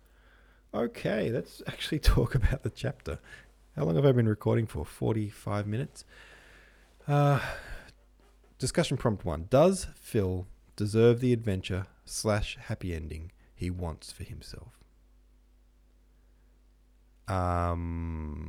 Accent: Australian